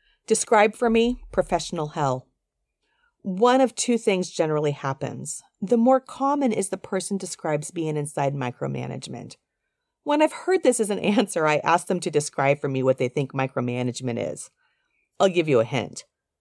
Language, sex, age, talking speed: English, female, 40-59, 165 wpm